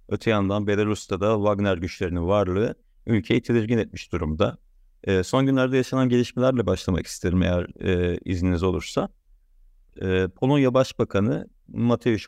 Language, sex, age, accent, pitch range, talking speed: Turkish, male, 50-69, native, 95-125 Hz, 125 wpm